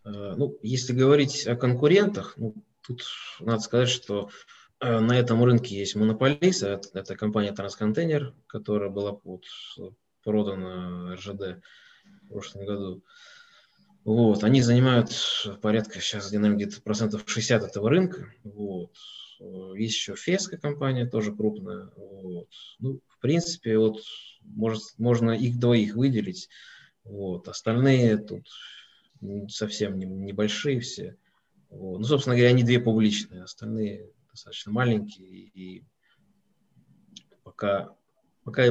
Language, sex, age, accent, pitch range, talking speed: Russian, male, 20-39, native, 100-125 Hz, 100 wpm